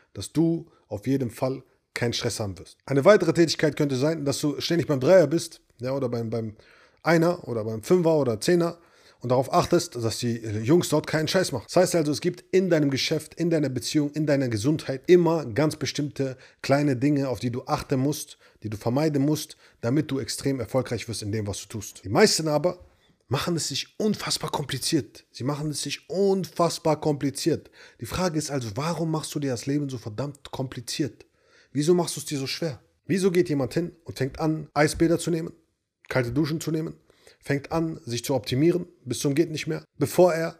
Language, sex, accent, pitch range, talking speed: German, male, German, 130-165 Hz, 205 wpm